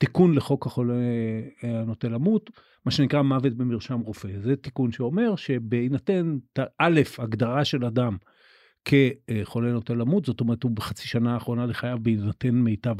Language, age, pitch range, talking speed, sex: Hebrew, 50-69, 115-145 Hz, 140 wpm, male